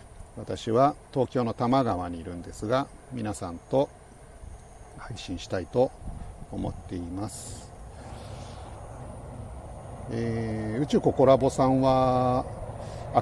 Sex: male